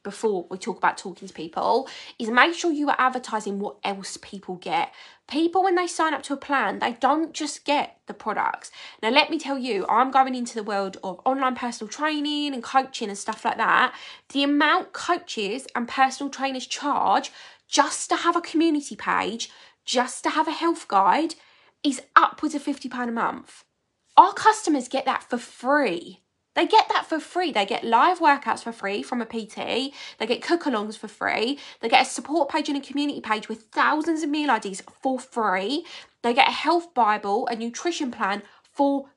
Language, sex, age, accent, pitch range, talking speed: English, female, 20-39, British, 235-330 Hz, 195 wpm